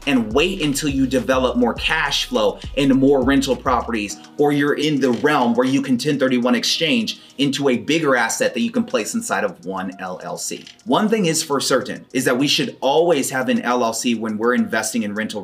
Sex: male